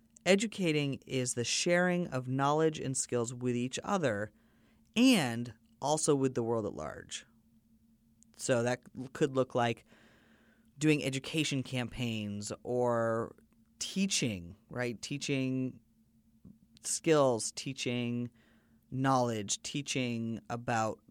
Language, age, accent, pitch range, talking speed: English, 30-49, American, 115-140 Hz, 100 wpm